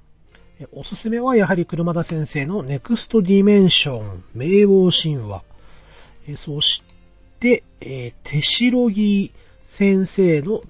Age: 40-59